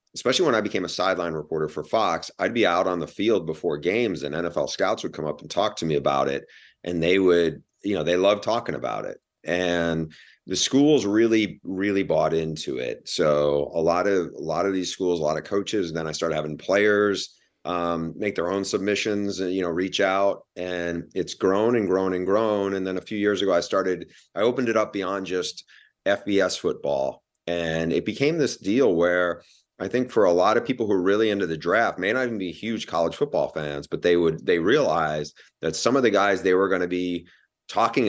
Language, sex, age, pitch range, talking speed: English, male, 30-49, 85-100 Hz, 225 wpm